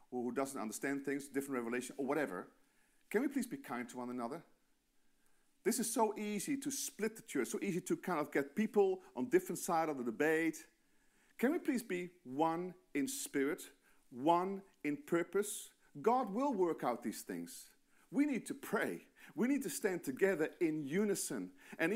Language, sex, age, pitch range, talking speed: English, male, 40-59, 150-240 Hz, 180 wpm